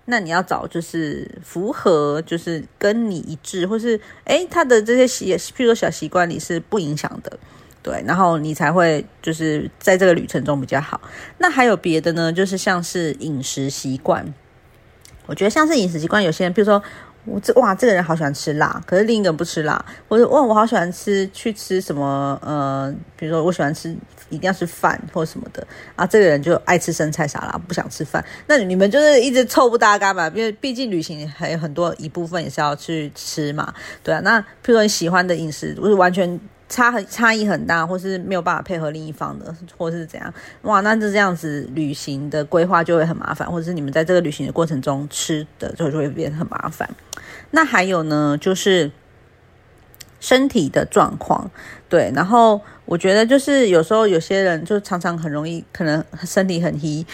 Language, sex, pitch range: Chinese, female, 155-210 Hz